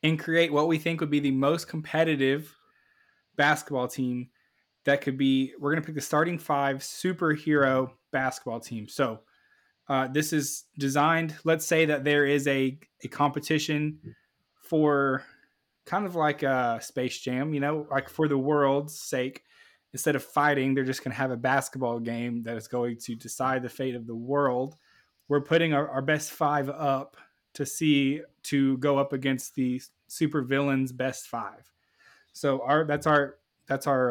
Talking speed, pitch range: 170 wpm, 130-155 Hz